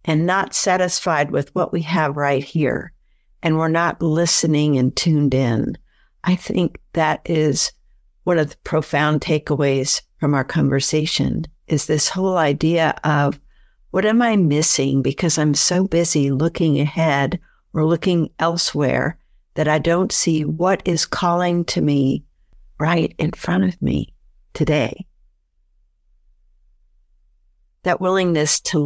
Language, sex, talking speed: English, female, 135 wpm